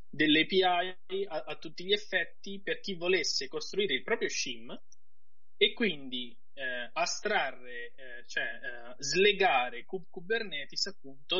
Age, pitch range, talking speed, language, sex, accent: 20-39, 135-230 Hz, 125 wpm, Italian, male, native